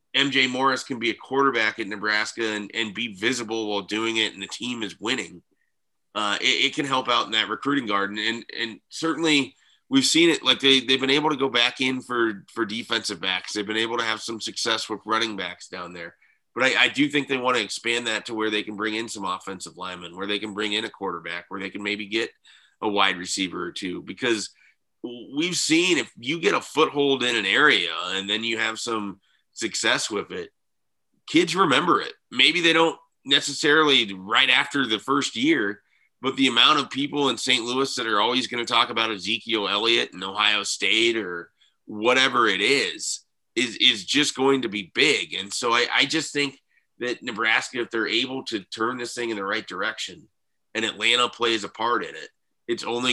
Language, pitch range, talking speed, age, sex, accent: English, 105-140 Hz, 210 wpm, 30-49, male, American